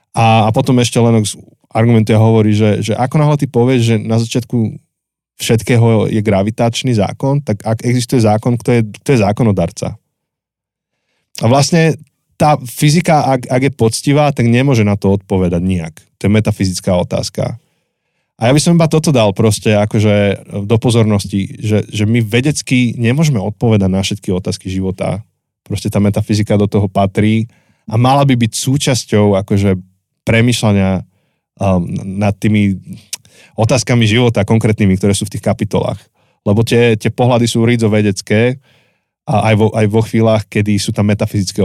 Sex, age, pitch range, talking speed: male, 20-39, 100-125 Hz, 155 wpm